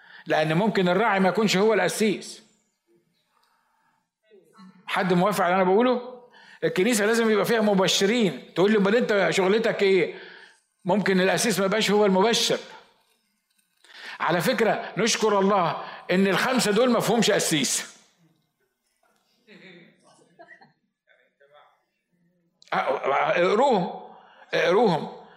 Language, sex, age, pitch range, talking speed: Arabic, male, 50-69, 185-225 Hz, 95 wpm